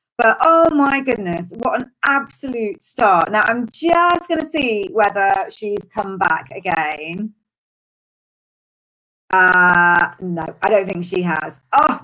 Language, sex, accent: English, female, British